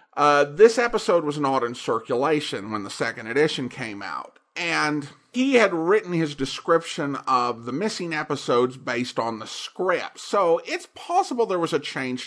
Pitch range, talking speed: 135-210 Hz, 165 wpm